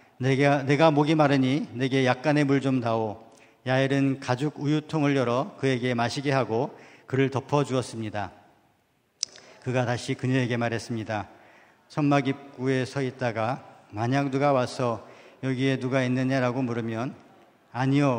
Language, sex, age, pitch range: Korean, male, 50-69, 120-140 Hz